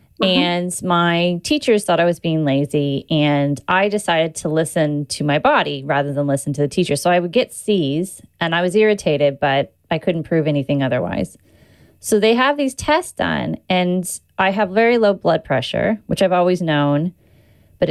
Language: English